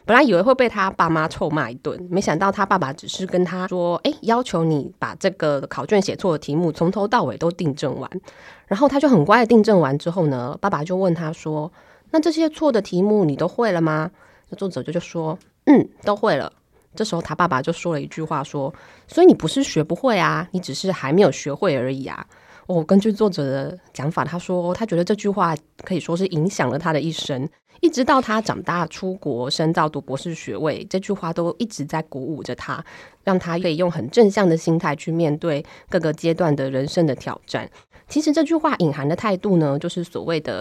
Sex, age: female, 20-39